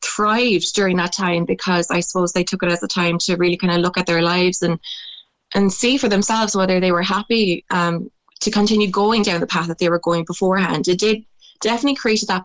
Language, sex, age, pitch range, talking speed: English, female, 20-39, 175-205 Hz, 225 wpm